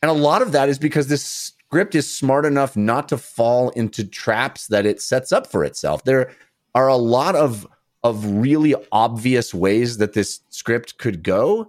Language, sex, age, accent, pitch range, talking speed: English, male, 30-49, American, 105-145 Hz, 190 wpm